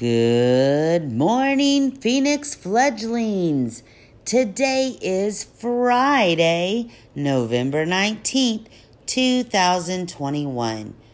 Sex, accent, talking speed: female, American, 55 wpm